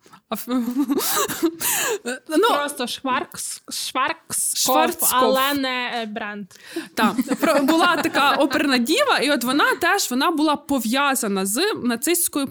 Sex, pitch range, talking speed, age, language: female, 240-310 Hz, 90 wpm, 20-39, Ukrainian